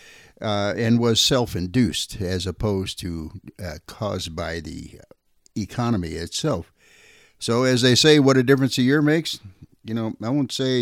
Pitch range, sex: 100-125 Hz, male